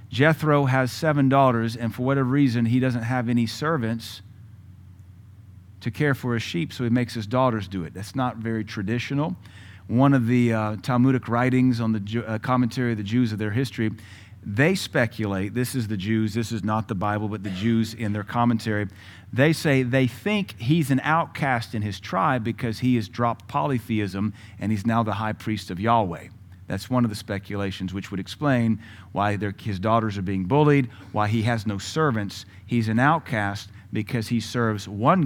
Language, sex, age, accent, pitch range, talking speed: English, male, 40-59, American, 100-125 Hz, 190 wpm